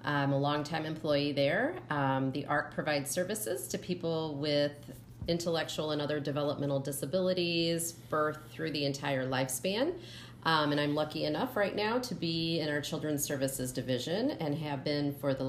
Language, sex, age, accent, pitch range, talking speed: English, female, 30-49, American, 140-175 Hz, 165 wpm